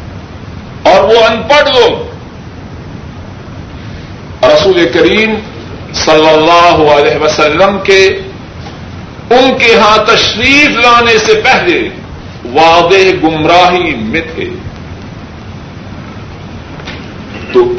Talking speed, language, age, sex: 80 wpm, Urdu, 50-69, male